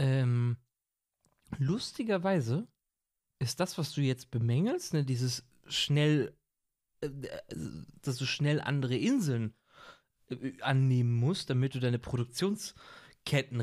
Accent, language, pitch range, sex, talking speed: German, German, 125-195 Hz, male, 95 wpm